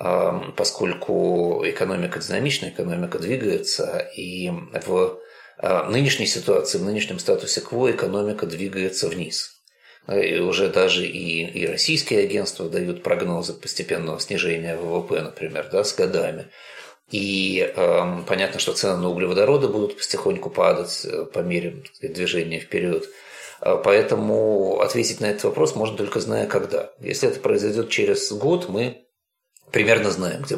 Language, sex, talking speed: Russian, male, 125 wpm